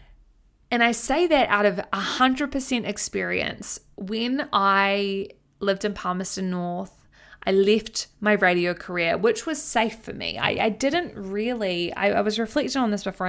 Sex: female